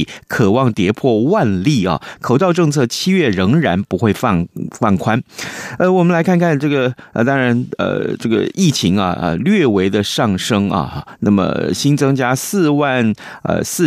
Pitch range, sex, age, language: 100-145 Hz, male, 30-49, Chinese